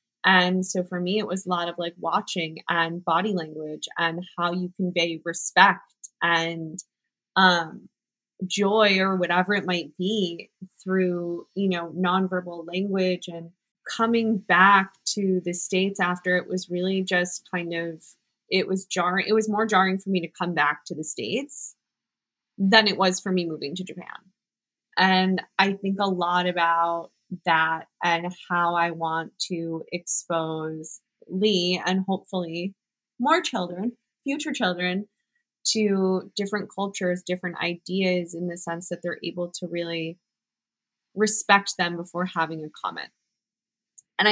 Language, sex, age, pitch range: English, female, 20-39, 170-195 Hz